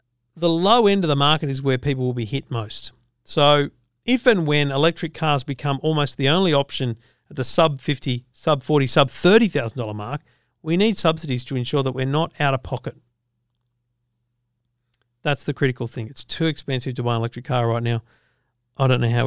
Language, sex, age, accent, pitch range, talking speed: English, male, 50-69, Australian, 120-165 Hz, 200 wpm